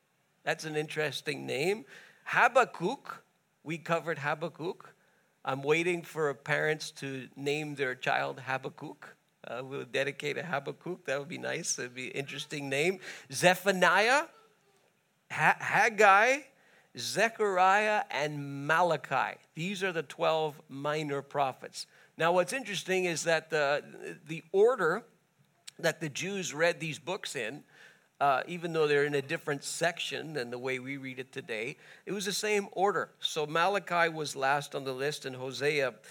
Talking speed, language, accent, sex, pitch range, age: 145 wpm, English, American, male, 135-170 Hz, 50-69